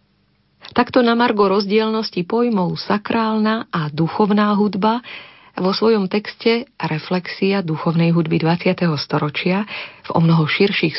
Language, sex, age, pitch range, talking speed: Slovak, female, 40-59, 165-200 Hz, 110 wpm